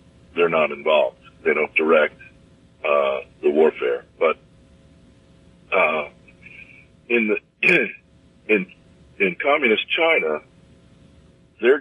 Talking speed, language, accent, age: 90 wpm, English, American, 50-69